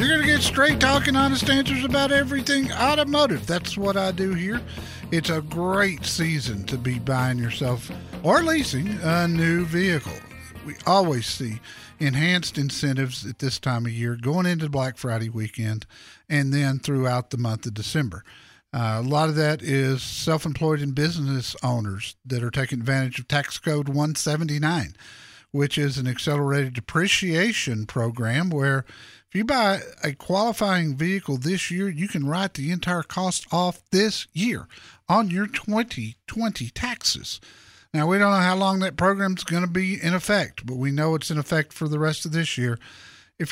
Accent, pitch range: American, 130-185 Hz